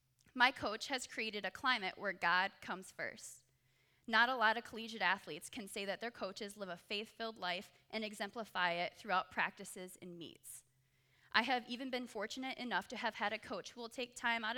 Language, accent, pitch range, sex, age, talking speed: English, American, 150-230 Hz, female, 20-39, 200 wpm